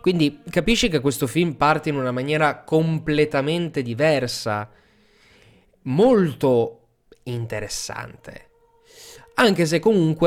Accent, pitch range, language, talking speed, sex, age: native, 115-155 Hz, Italian, 95 wpm, male, 20-39